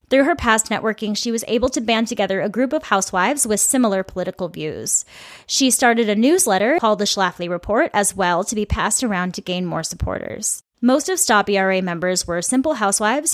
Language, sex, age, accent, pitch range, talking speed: English, female, 20-39, American, 185-230 Hz, 200 wpm